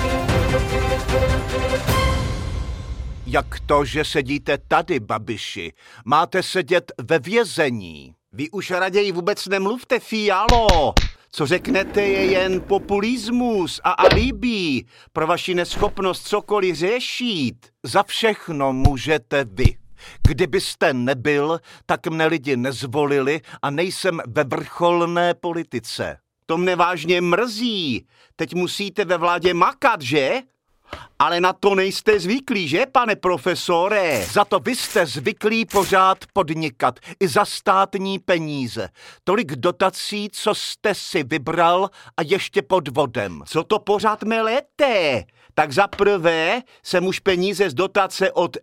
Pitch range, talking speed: 155-200 Hz, 115 wpm